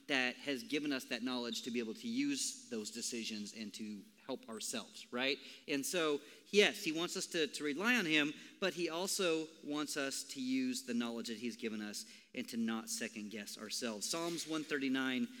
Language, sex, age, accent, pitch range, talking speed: English, male, 40-59, American, 130-220 Hz, 195 wpm